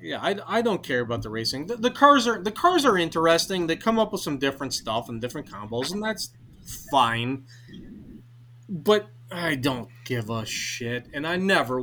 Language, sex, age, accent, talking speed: English, male, 30-49, American, 195 wpm